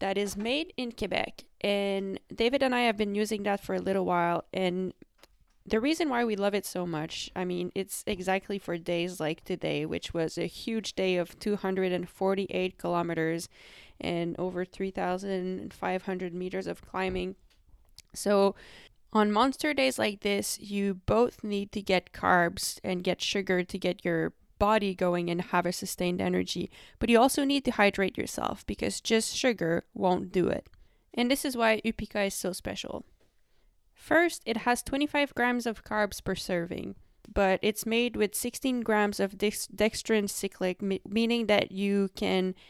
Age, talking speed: 20-39, 165 wpm